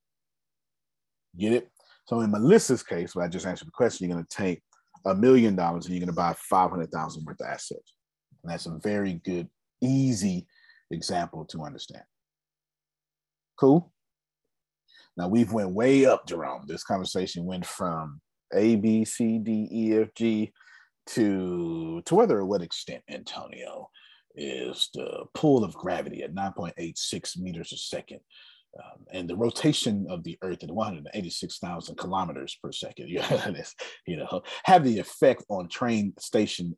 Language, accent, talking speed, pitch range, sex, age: English, American, 150 wpm, 95-135 Hz, male, 40-59